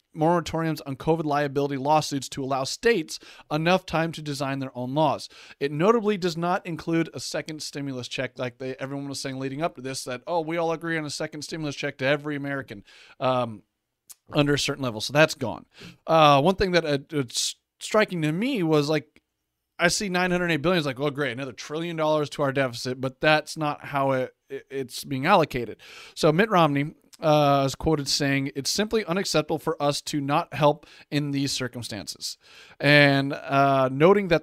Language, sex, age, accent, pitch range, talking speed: English, male, 30-49, American, 140-170 Hz, 190 wpm